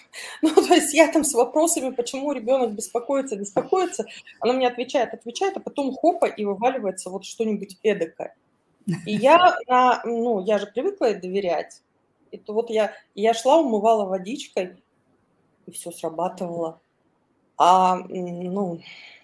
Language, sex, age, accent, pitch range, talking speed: Russian, female, 20-39, native, 205-275 Hz, 135 wpm